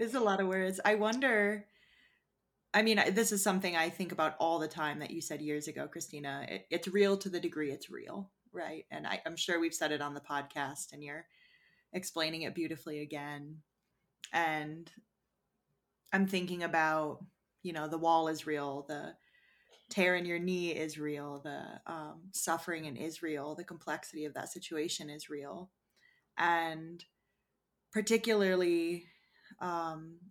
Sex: female